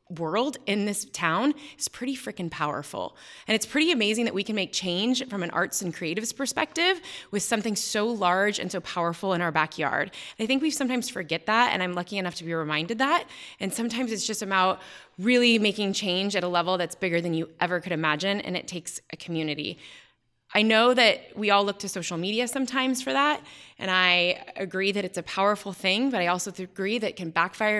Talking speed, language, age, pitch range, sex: 210 wpm, English, 20-39, 180-220 Hz, female